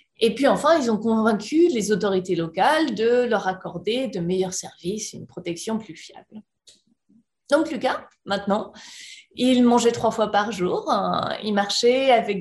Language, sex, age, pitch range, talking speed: French, female, 30-49, 205-260 Hz, 155 wpm